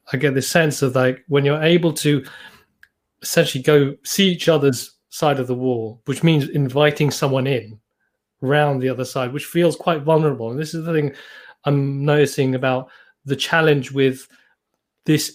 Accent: British